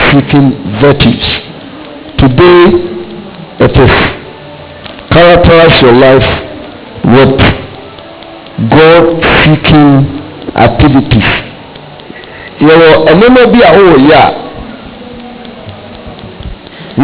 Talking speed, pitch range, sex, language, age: 70 wpm, 135-195 Hz, male, English, 60-79